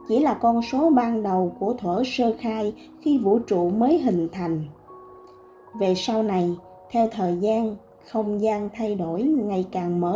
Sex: female